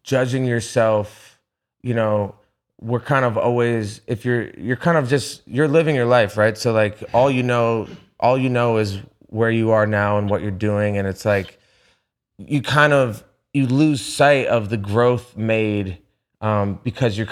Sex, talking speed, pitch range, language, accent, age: male, 180 wpm, 105-125 Hz, English, American, 30-49